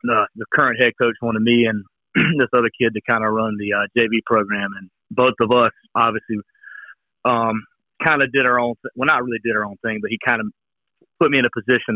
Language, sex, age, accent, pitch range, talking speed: English, male, 40-59, American, 110-125 Hz, 230 wpm